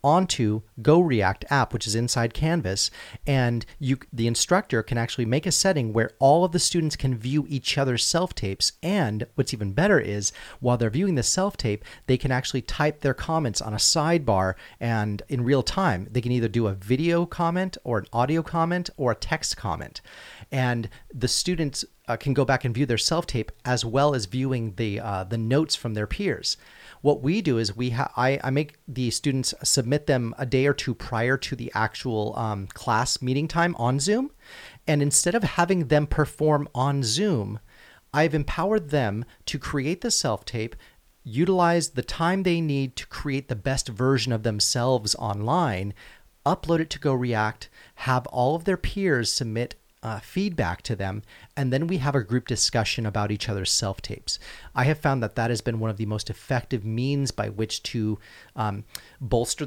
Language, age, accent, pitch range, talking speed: English, 30-49, American, 110-150 Hz, 190 wpm